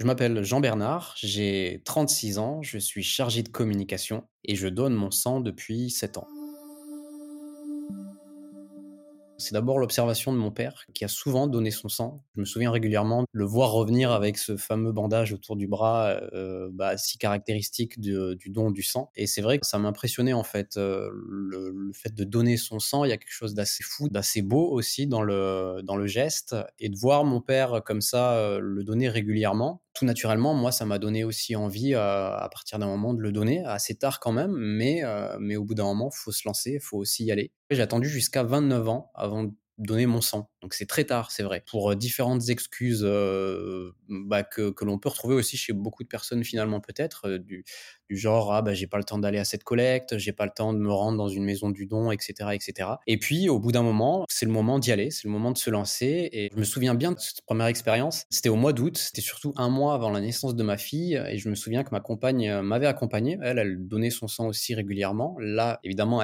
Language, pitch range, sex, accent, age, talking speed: French, 100-125 Hz, male, French, 20-39, 230 wpm